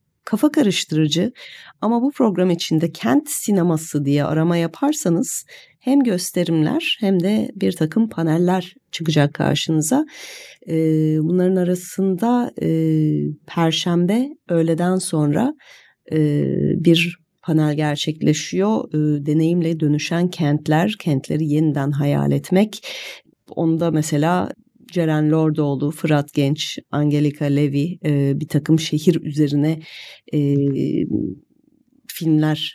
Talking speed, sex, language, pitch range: 95 wpm, female, Turkish, 150-200 Hz